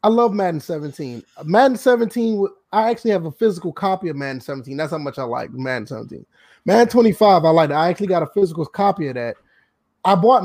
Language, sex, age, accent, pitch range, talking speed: English, male, 20-39, American, 160-220 Hz, 215 wpm